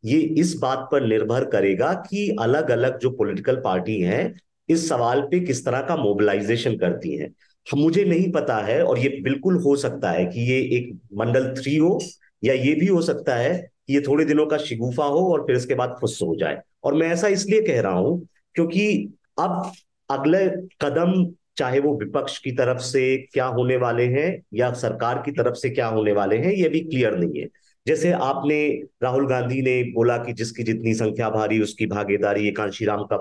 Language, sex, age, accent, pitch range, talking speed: Hindi, male, 50-69, native, 110-155 Hz, 195 wpm